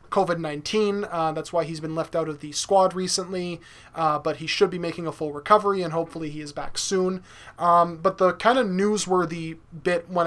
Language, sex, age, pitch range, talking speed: English, male, 20-39, 160-190 Hz, 200 wpm